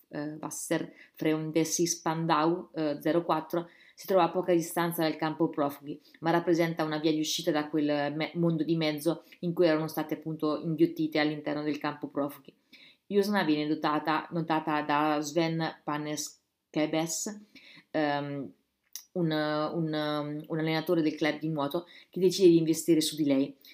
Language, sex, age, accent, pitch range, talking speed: Italian, female, 20-39, native, 155-170 Hz, 150 wpm